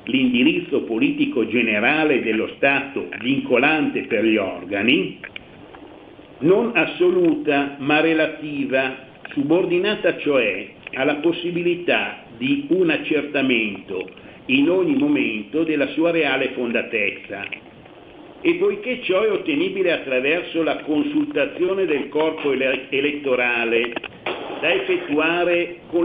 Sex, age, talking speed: male, 60-79, 95 wpm